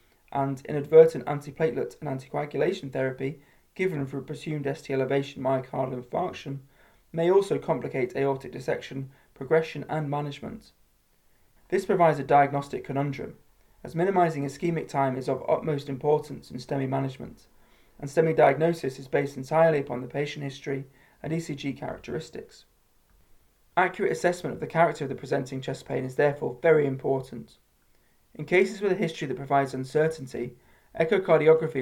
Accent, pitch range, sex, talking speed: British, 135-160 Hz, male, 140 wpm